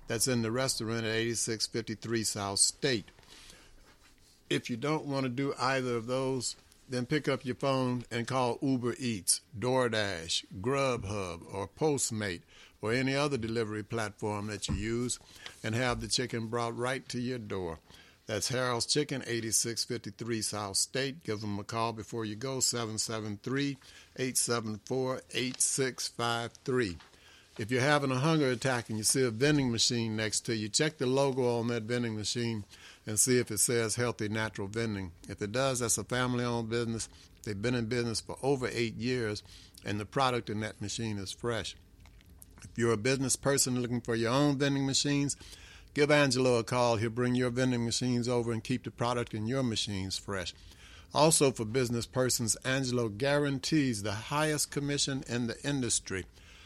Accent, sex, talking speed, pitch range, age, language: American, male, 165 wpm, 105-130 Hz, 60-79, English